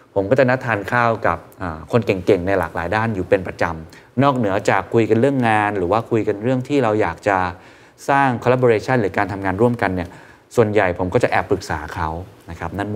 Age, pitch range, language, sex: 20-39, 90-120 Hz, Thai, male